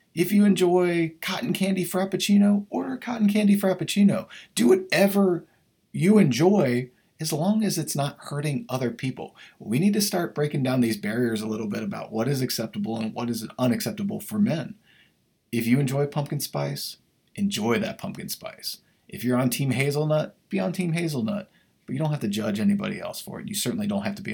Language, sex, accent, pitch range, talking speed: English, male, American, 120-200 Hz, 190 wpm